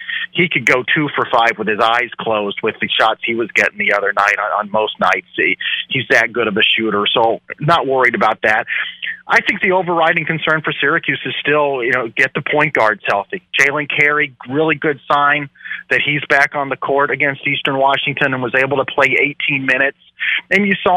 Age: 40-59